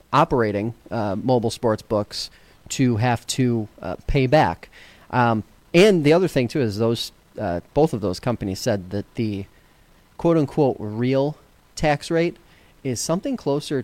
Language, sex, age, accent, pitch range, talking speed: English, male, 30-49, American, 110-135 Hz, 145 wpm